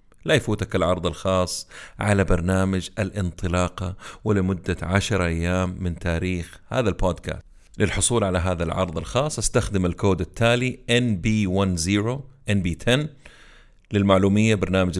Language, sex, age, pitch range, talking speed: Arabic, male, 30-49, 90-110 Hz, 105 wpm